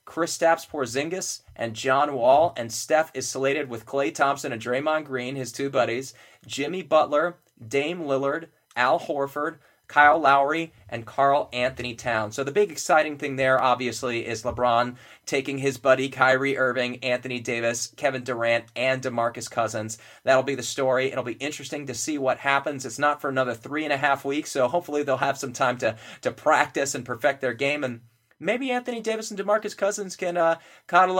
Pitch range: 125-155 Hz